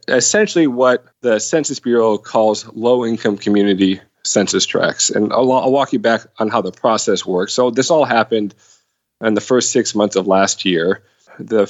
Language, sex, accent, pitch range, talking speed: English, male, American, 105-130 Hz, 175 wpm